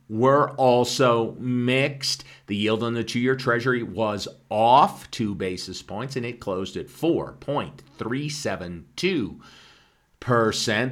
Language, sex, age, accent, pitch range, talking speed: English, male, 50-69, American, 100-145 Hz, 110 wpm